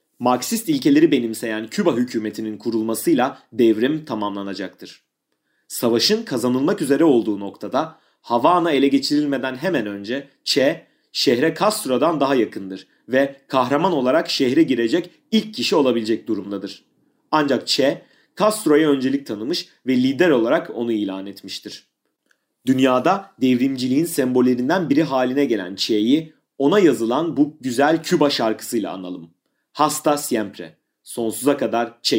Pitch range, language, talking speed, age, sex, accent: 110-160 Hz, Turkish, 115 wpm, 30-49, male, native